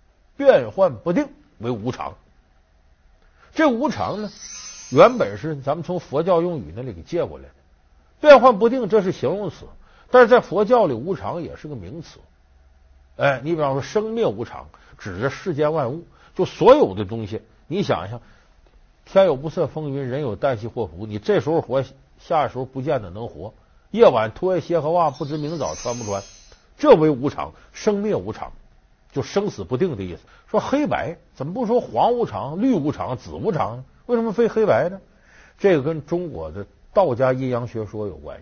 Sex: male